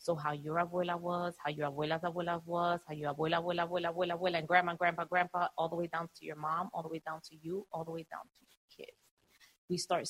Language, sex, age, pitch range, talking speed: English, female, 30-49, 160-200 Hz, 255 wpm